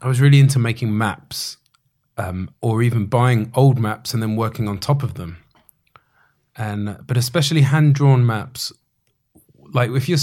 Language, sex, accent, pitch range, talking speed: English, male, British, 105-130 Hz, 160 wpm